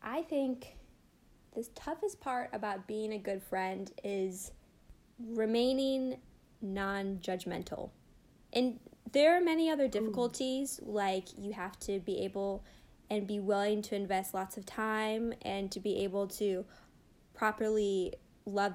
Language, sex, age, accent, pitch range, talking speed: English, female, 10-29, American, 195-240 Hz, 130 wpm